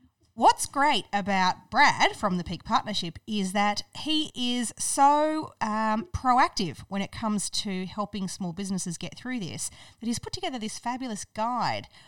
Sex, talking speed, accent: female, 160 wpm, Australian